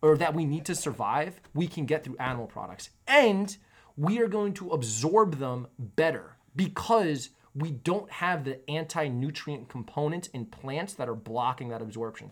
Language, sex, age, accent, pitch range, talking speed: English, male, 20-39, American, 130-170 Hz, 165 wpm